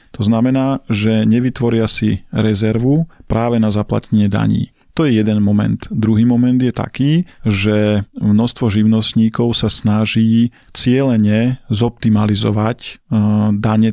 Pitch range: 105-115 Hz